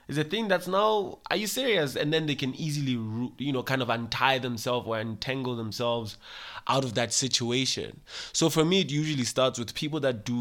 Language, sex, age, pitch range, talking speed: English, male, 20-39, 110-135 Hz, 210 wpm